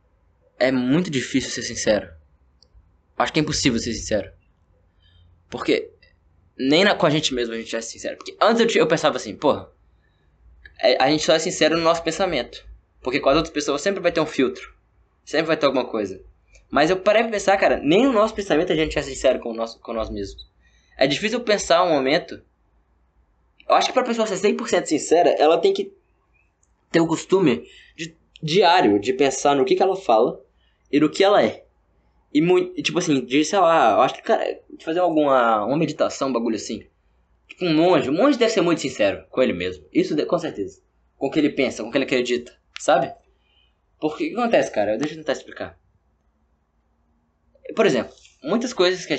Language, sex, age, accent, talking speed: Portuguese, male, 10-29, Brazilian, 200 wpm